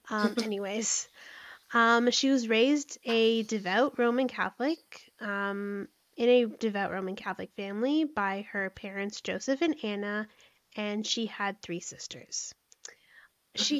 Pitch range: 205-245 Hz